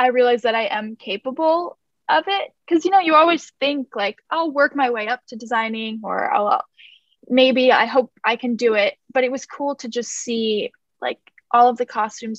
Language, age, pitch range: English, 10-29, 225-270 Hz